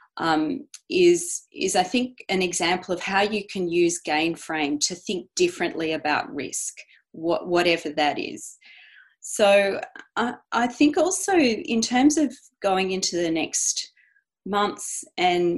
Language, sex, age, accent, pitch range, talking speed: English, female, 30-49, Australian, 160-215 Hz, 145 wpm